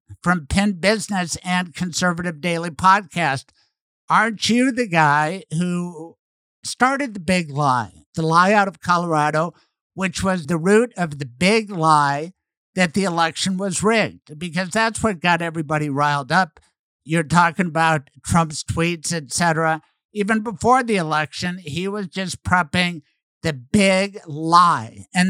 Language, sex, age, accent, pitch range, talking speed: English, male, 60-79, American, 165-195 Hz, 140 wpm